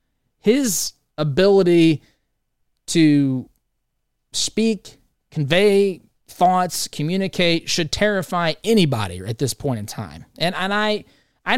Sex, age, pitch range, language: male, 30-49, 135-195 Hz, English